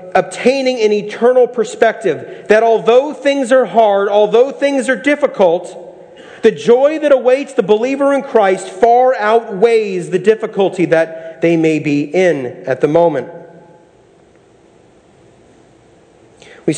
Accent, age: American, 40-59